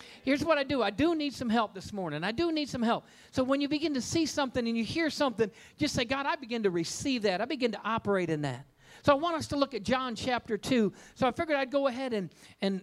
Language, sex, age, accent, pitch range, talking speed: English, male, 50-69, American, 200-265 Hz, 275 wpm